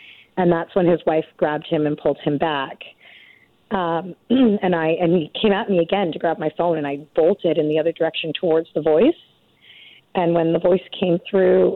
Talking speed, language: 205 wpm, English